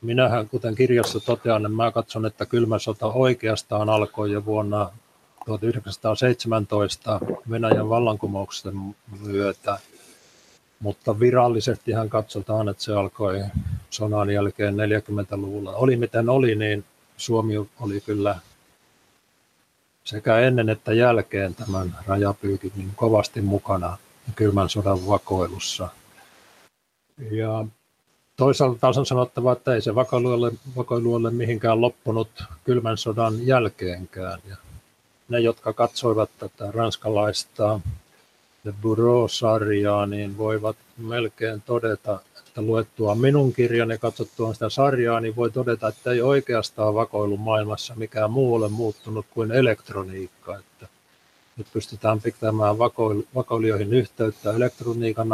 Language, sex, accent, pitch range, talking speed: Finnish, male, native, 105-115 Hz, 110 wpm